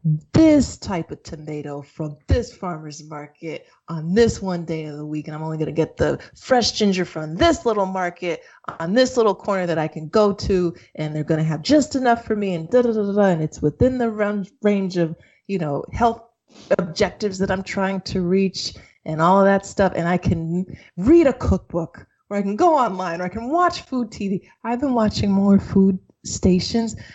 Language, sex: English, female